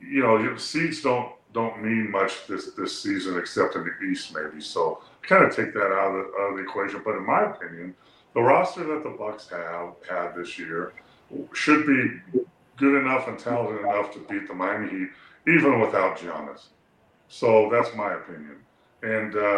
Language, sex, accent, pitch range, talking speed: English, female, American, 95-150 Hz, 190 wpm